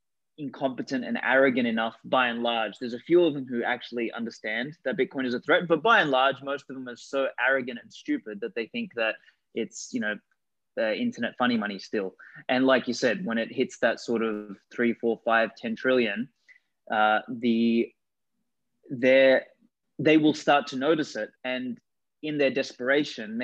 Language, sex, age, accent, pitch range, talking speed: English, male, 20-39, Australian, 125-160 Hz, 185 wpm